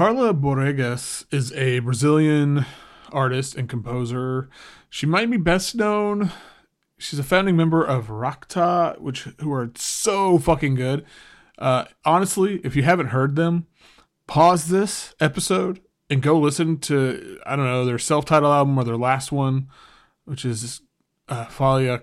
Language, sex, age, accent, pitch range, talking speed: English, male, 20-39, American, 130-165 Hz, 145 wpm